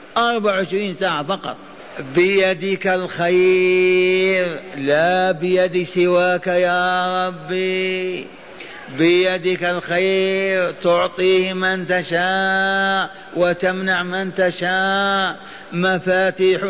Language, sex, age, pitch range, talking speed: Arabic, male, 50-69, 180-205 Hz, 70 wpm